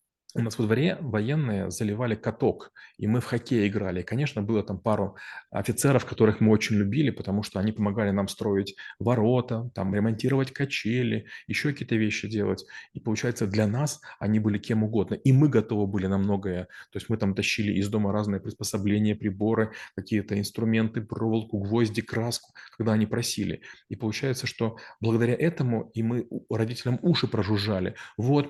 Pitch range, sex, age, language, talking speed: 105-120 Hz, male, 20-39, Russian, 165 wpm